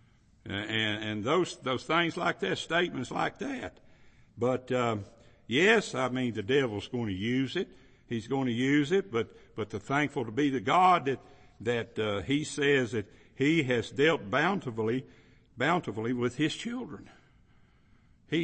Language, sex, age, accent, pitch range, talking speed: English, male, 60-79, American, 115-155 Hz, 165 wpm